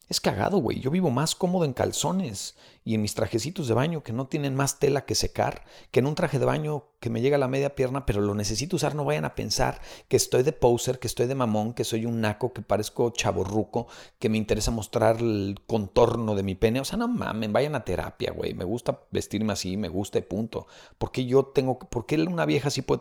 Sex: male